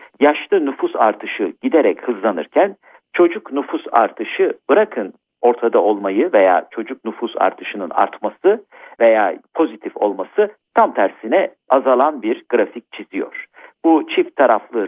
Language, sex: Turkish, male